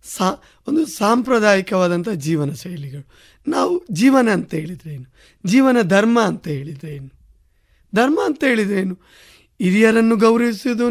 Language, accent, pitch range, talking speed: Kannada, native, 175-235 Hz, 115 wpm